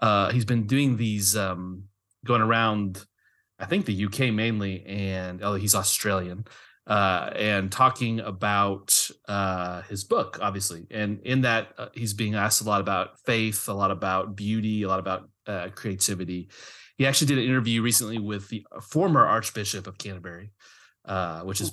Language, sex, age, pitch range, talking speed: English, male, 30-49, 100-125 Hz, 165 wpm